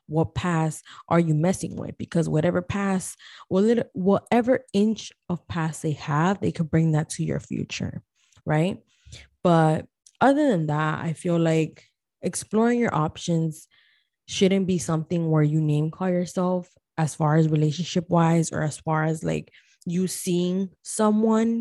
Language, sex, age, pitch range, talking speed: English, female, 20-39, 160-205 Hz, 150 wpm